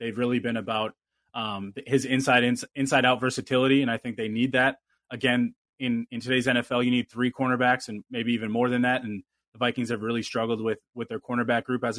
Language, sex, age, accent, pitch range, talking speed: English, male, 20-39, American, 115-125 Hz, 220 wpm